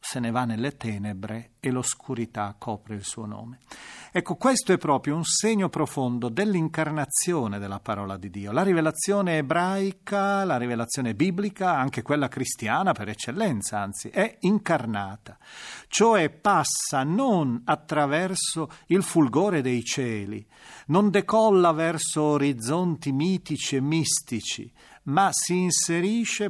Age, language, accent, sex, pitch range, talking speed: 40-59, Italian, native, male, 125-185 Hz, 125 wpm